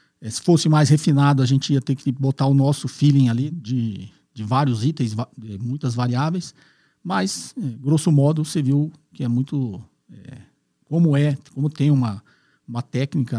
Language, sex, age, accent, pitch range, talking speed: Portuguese, male, 50-69, Brazilian, 120-145 Hz, 155 wpm